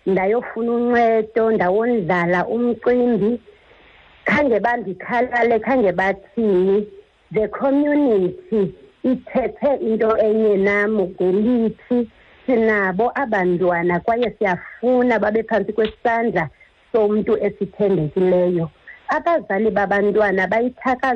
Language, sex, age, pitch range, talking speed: English, female, 50-69, 190-230 Hz, 85 wpm